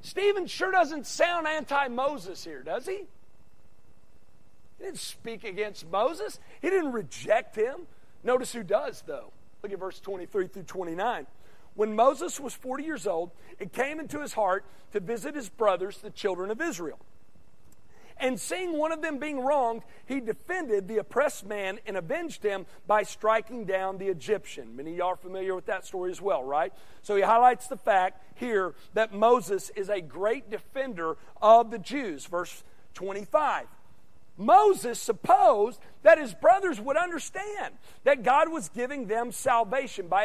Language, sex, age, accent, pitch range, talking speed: English, male, 50-69, American, 205-300 Hz, 160 wpm